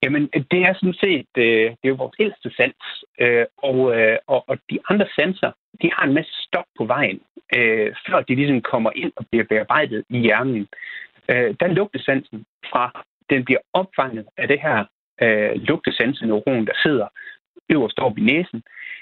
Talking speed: 150 wpm